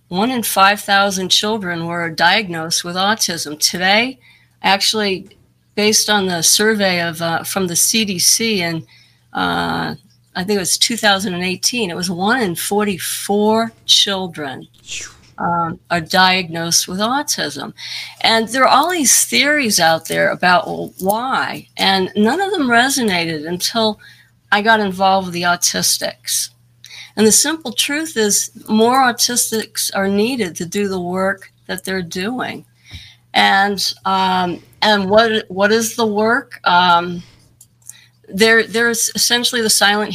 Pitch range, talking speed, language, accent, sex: 175-225 Hz, 130 wpm, English, American, female